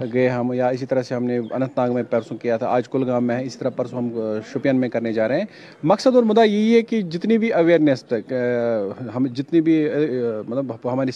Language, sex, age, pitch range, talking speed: Urdu, male, 40-59, 125-170 Hz, 225 wpm